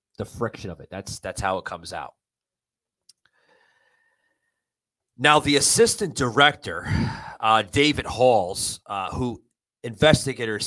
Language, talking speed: English, 110 wpm